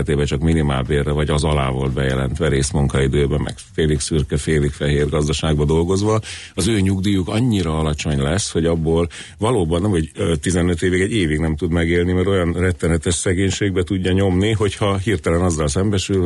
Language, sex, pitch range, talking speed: Hungarian, male, 80-95 Hz, 160 wpm